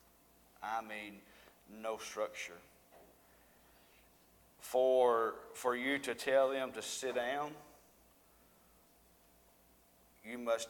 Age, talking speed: 50-69, 85 wpm